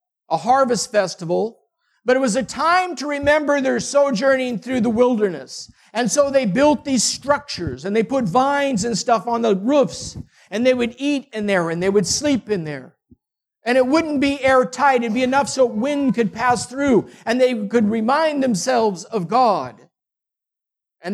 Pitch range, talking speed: 215-270 Hz, 180 wpm